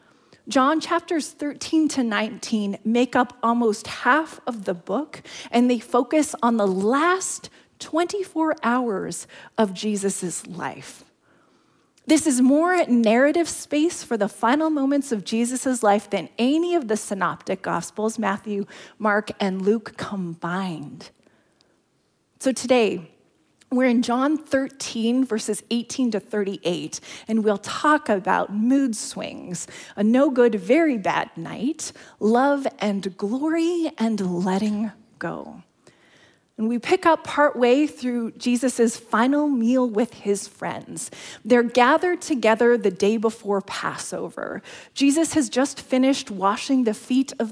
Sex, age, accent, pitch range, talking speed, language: female, 30-49, American, 210-290 Hz, 130 wpm, English